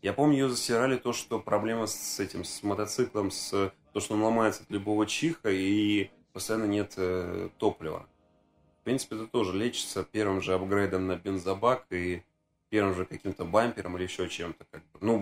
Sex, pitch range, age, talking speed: male, 95-110 Hz, 20-39, 165 wpm